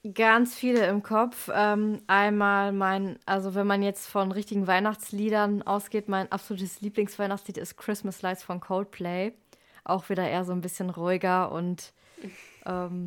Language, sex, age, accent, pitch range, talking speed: German, female, 20-39, German, 190-220 Hz, 145 wpm